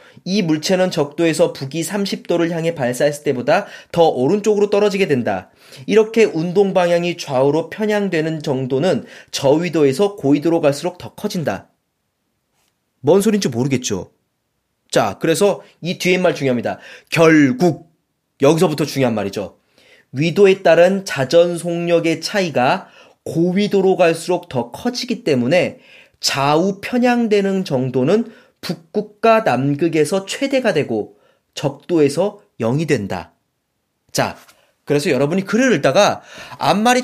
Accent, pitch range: native, 140-200 Hz